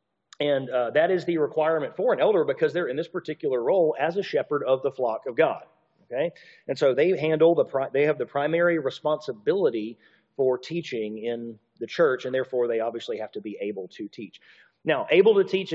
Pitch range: 140-200 Hz